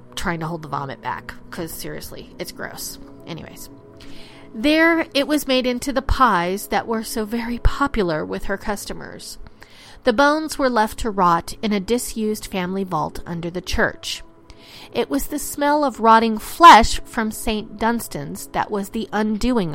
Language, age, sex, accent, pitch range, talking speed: English, 40-59, female, American, 185-250 Hz, 165 wpm